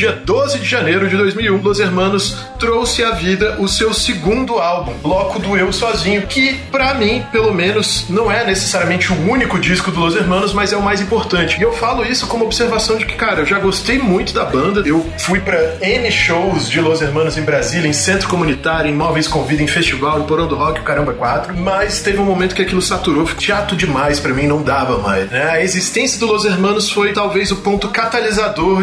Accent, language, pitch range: Brazilian, English, 165-205 Hz